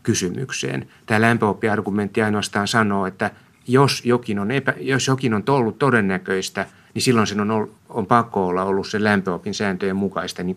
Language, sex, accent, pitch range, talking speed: Finnish, male, native, 95-115 Hz, 160 wpm